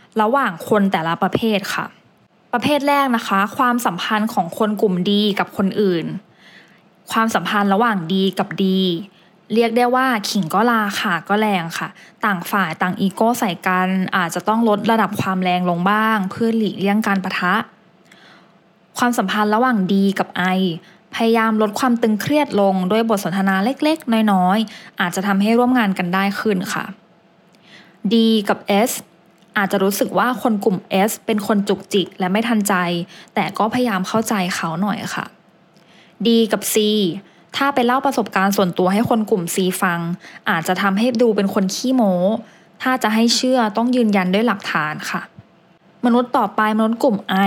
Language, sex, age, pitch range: English, female, 20-39, 190-225 Hz